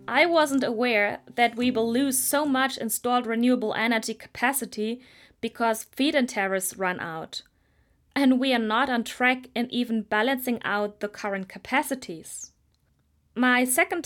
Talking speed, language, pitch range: 140 wpm, English, 205-260 Hz